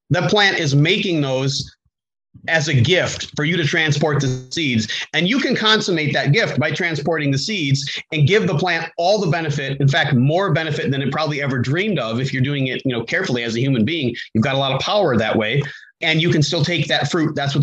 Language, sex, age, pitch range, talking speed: English, male, 30-49, 135-175 Hz, 230 wpm